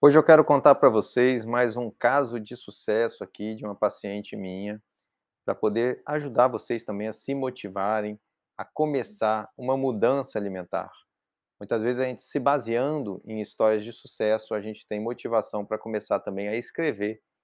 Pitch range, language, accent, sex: 105-125 Hz, Portuguese, Brazilian, male